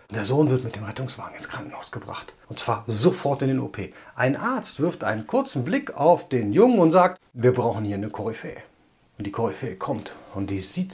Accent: German